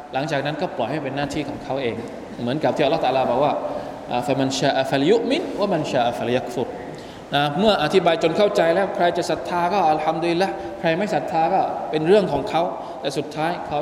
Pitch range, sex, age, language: 150-205 Hz, male, 20-39, Thai